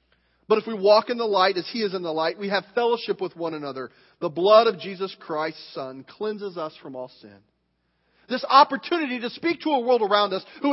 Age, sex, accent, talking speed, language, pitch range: 40-59, male, American, 225 wpm, English, 185-255 Hz